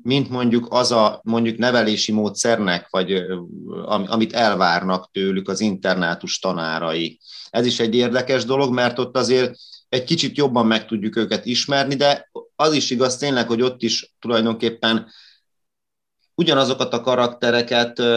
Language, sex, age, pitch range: Hungarian, male, 30-49, 105-125 Hz